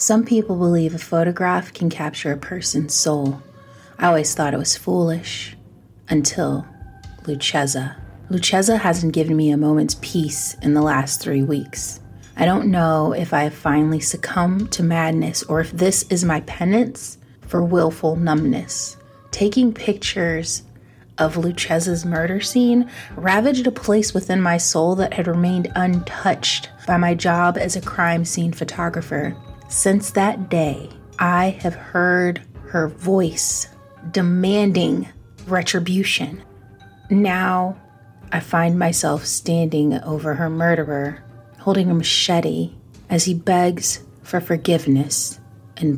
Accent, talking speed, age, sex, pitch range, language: American, 130 wpm, 30-49, female, 135-175 Hz, English